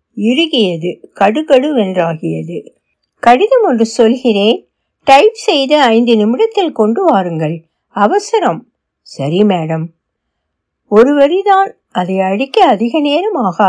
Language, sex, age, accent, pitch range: Tamil, female, 60-79, native, 190-270 Hz